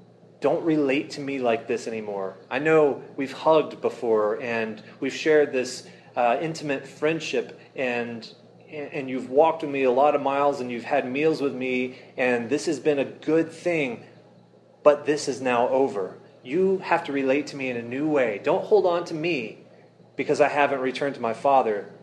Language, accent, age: English, American, 30-49